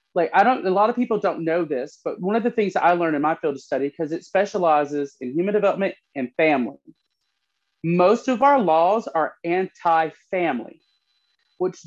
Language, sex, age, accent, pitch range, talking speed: English, male, 30-49, American, 160-215 Hz, 190 wpm